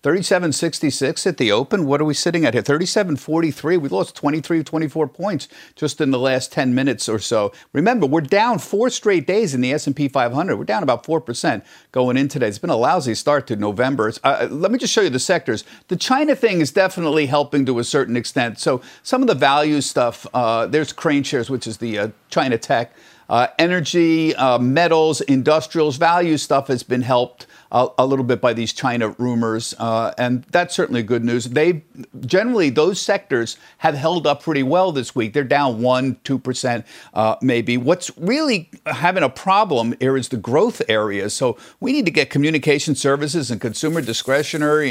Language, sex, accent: English, male, American